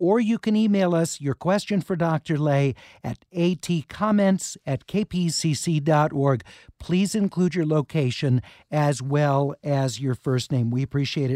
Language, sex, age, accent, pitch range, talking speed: English, male, 50-69, American, 145-185 Hz, 135 wpm